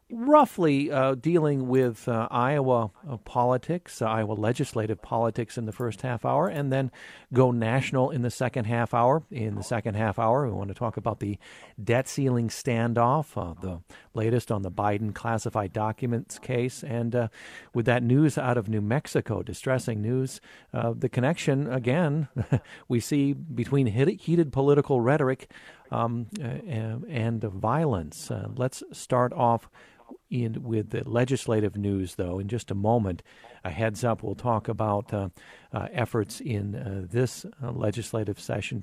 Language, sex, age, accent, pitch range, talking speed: English, male, 50-69, American, 110-130 Hz, 160 wpm